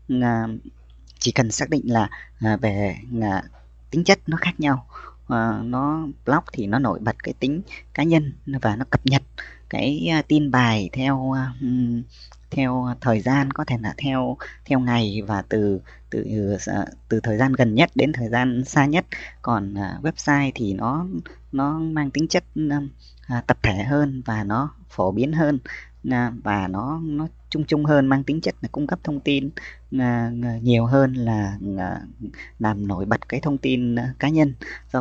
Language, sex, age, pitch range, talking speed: Vietnamese, female, 20-39, 110-140 Hz, 160 wpm